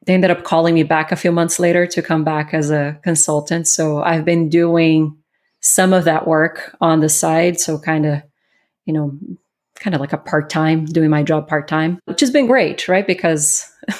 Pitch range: 160-185 Hz